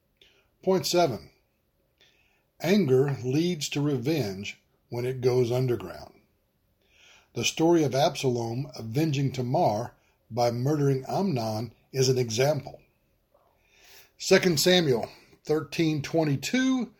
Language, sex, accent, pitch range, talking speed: English, male, American, 125-160 Hz, 90 wpm